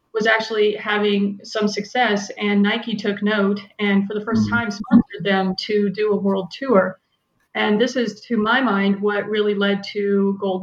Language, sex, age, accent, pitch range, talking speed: English, female, 30-49, American, 195-220 Hz, 180 wpm